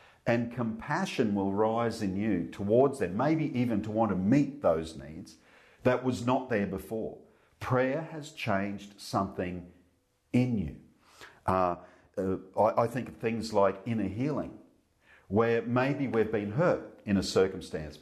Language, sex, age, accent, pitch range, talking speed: English, male, 50-69, Australian, 90-115 Hz, 150 wpm